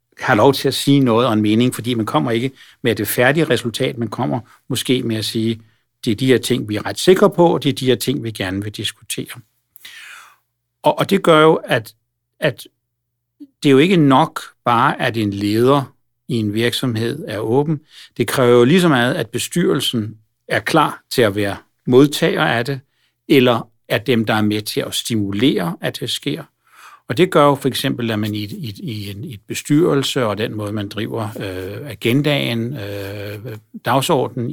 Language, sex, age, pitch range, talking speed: Danish, male, 60-79, 115-140 Hz, 190 wpm